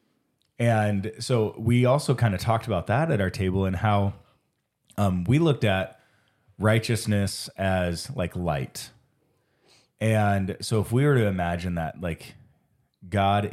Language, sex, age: English, male, 30-49